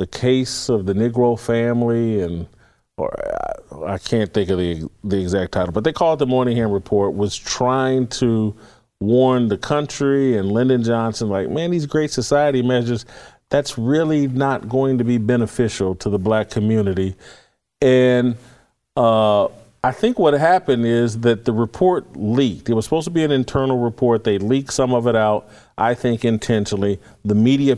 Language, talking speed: English, 175 wpm